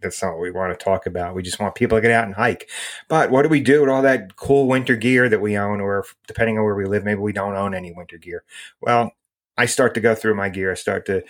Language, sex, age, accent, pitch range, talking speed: English, male, 30-49, American, 95-115 Hz, 290 wpm